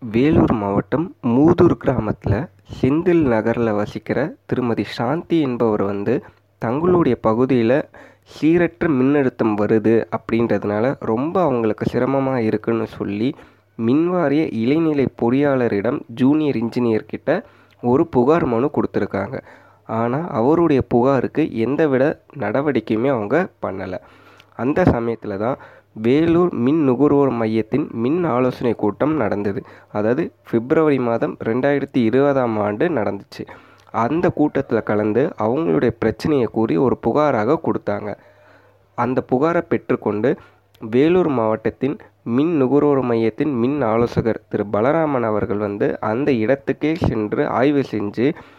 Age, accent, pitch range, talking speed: 20-39, native, 110-145 Hz, 105 wpm